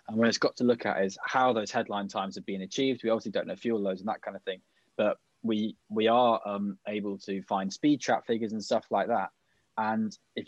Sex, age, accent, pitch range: male, 20-39, British, 100-115 Hz